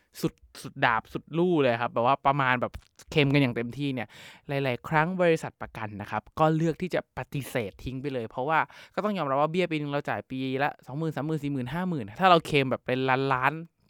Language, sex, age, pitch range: Thai, male, 20-39, 120-160 Hz